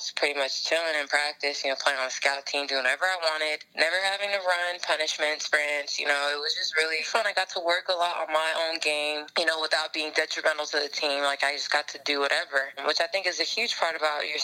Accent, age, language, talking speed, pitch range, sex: American, 20-39, English, 260 wpm, 135-160 Hz, female